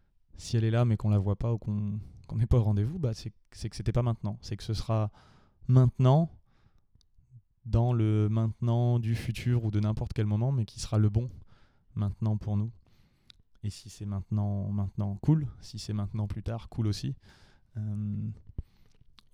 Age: 20-39